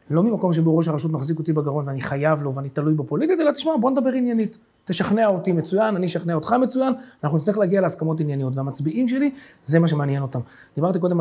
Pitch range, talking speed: 145-205 Hz, 210 wpm